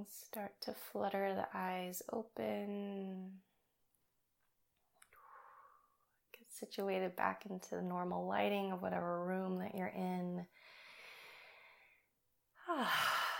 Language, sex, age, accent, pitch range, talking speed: English, female, 20-39, American, 170-205 Hz, 85 wpm